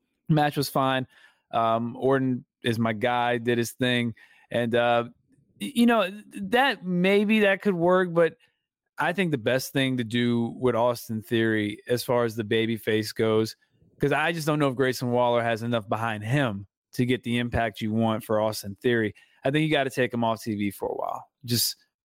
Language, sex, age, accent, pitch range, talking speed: English, male, 20-39, American, 110-130 Hz, 195 wpm